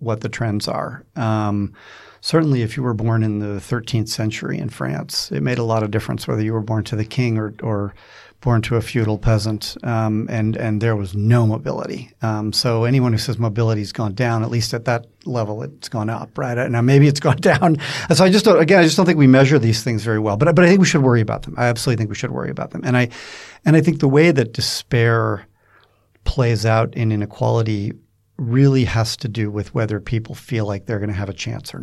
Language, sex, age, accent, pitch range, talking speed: English, male, 40-59, American, 110-130 Hz, 240 wpm